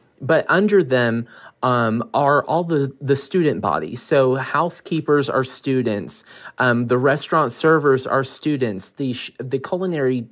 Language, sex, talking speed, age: English, male, 135 wpm, 30-49